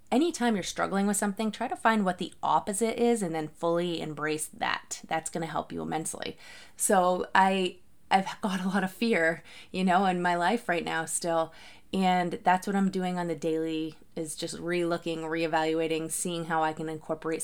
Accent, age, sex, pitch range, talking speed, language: American, 20-39, female, 165-205 Hz, 195 wpm, English